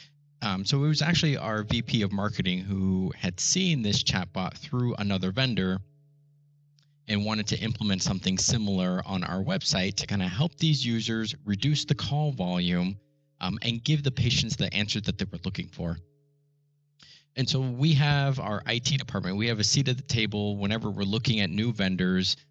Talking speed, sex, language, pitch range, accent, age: 180 wpm, male, English, 100-145 Hz, American, 30-49